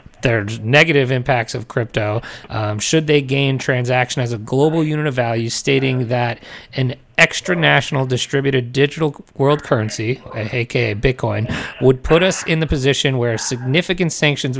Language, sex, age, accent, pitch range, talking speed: English, male, 30-49, American, 115-135 Hz, 150 wpm